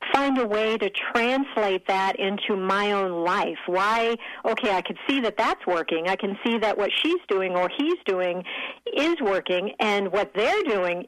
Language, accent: English, American